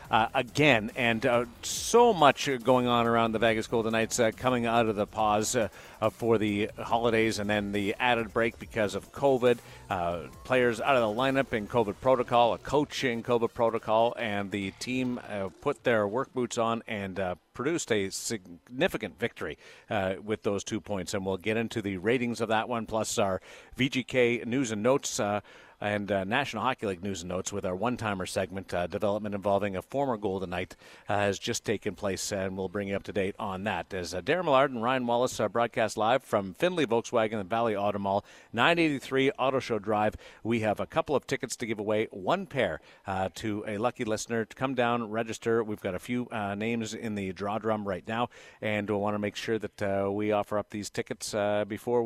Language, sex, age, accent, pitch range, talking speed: English, male, 50-69, American, 100-120 Hz, 210 wpm